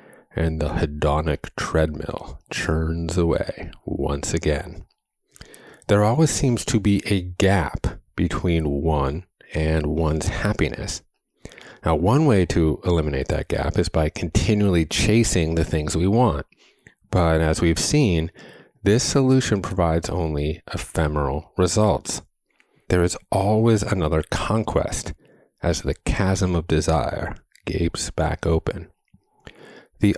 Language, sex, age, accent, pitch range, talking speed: English, male, 30-49, American, 80-100 Hz, 115 wpm